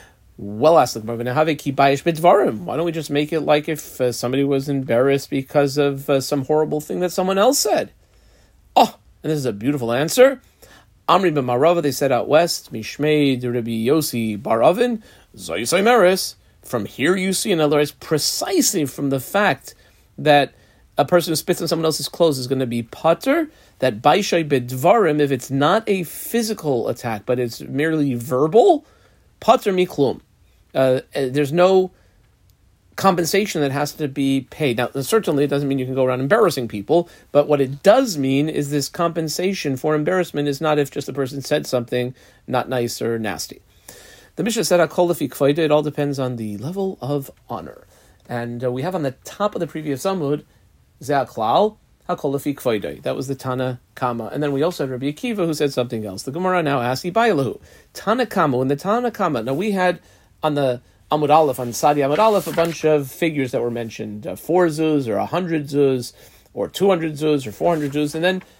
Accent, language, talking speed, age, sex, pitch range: American, English, 185 wpm, 40-59, male, 130-170 Hz